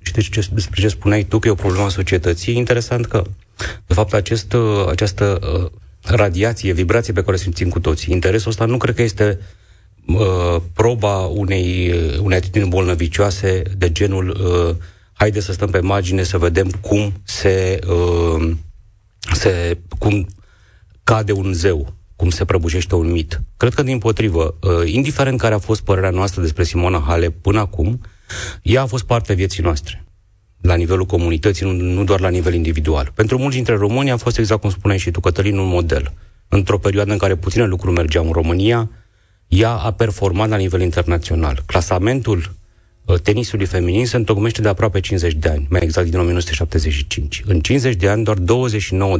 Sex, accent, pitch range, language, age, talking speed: male, native, 90-105 Hz, Romanian, 30-49, 175 wpm